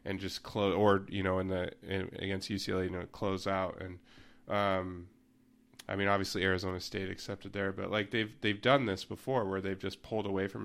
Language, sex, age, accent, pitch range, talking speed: English, male, 20-39, American, 95-105 Hz, 210 wpm